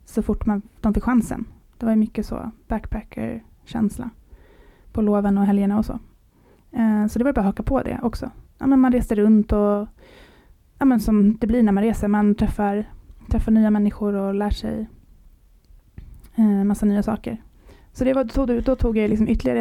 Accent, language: Norwegian, Swedish